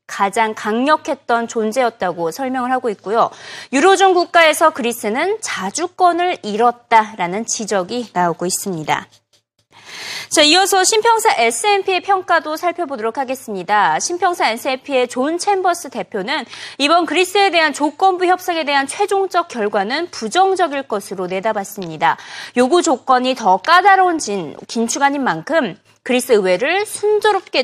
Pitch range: 220-360 Hz